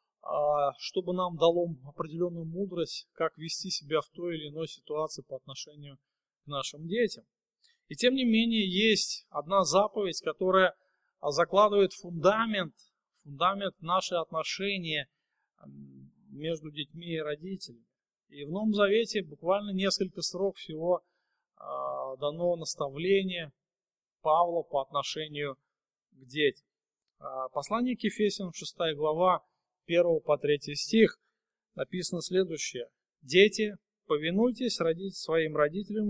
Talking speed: 110 wpm